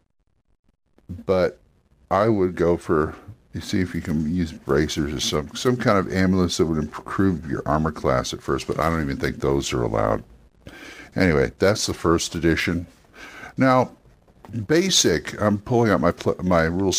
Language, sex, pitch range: English, male, 80-105 Hz